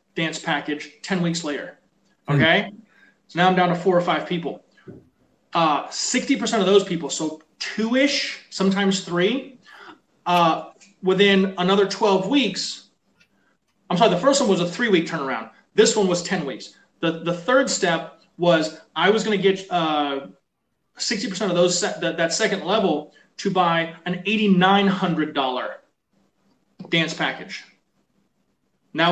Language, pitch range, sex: English, 165-205 Hz, male